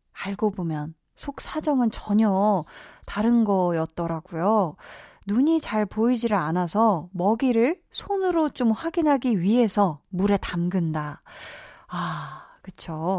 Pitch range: 180-245 Hz